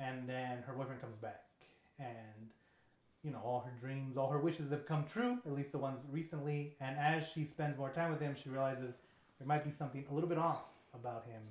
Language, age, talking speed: English, 30-49, 225 wpm